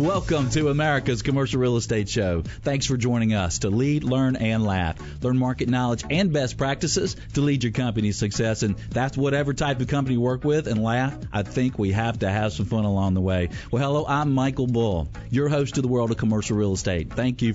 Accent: American